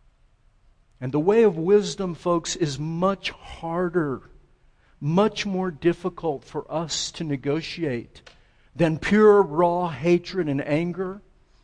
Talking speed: 115 wpm